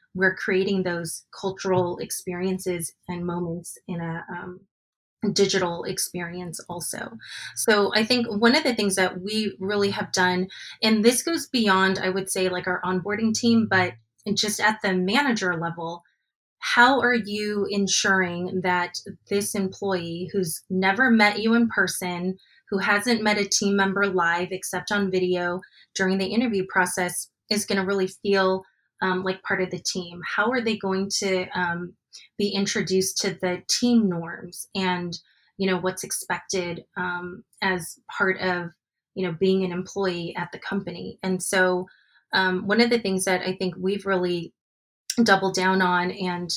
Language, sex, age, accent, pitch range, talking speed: English, female, 20-39, American, 180-200 Hz, 160 wpm